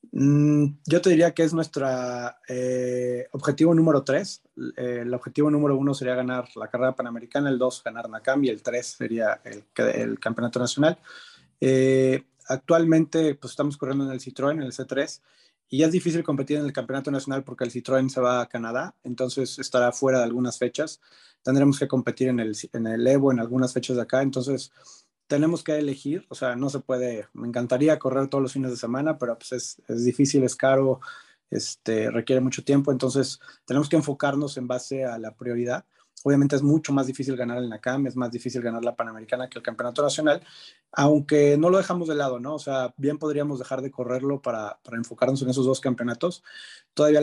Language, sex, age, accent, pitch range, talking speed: Spanish, male, 30-49, Mexican, 125-145 Hz, 200 wpm